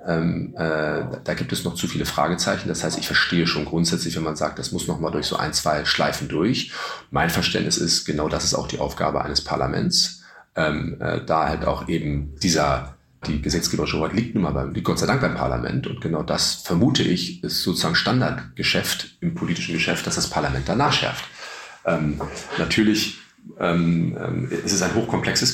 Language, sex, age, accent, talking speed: German, male, 40-59, German, 195 wpm